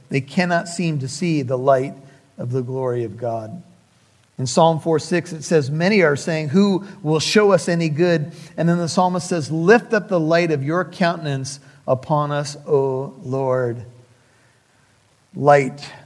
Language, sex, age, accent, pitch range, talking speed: English, male, 50-69, American, 140-180 Hz, 165 wpm